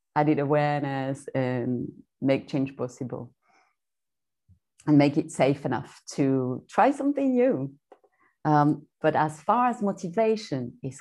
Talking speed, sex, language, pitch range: 120 wpm, female, English, 135-165 Hz